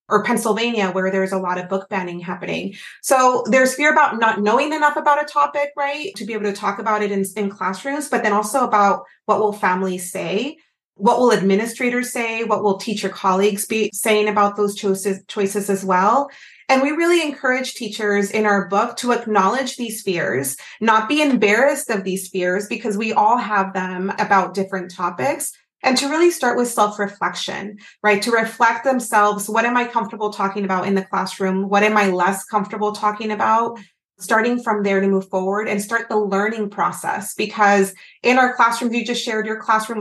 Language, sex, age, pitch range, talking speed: English, female, 30-49, 195-235 Hz, 190 wpm